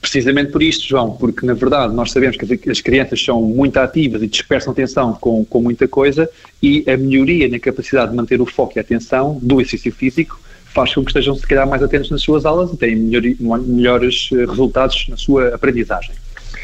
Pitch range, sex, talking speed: 120-155 Hz, male, 200 wpm